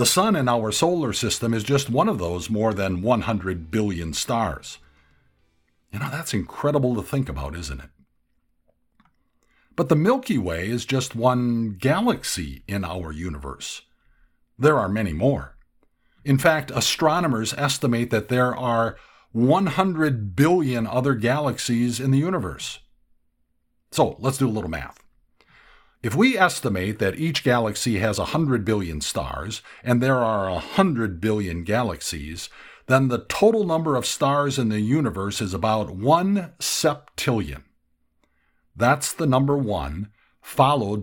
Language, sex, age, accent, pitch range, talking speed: English, male, 50-69, American, 85-135 Hz, 140 wpm